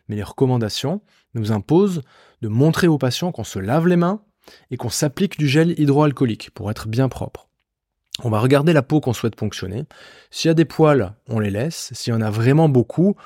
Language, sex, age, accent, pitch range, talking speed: French, male, 20-39, French, 110-150 Hz, 210 wpm